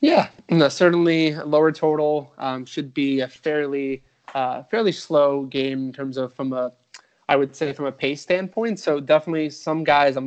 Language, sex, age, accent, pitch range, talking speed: English, male, 20-39, American, 130-155 Hz, 180 wpm